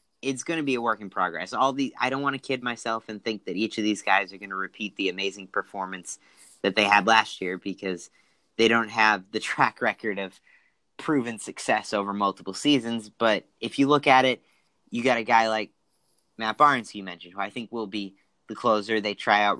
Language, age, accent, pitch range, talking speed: English, 20-39, American, 100-115 Hz, 225 wpm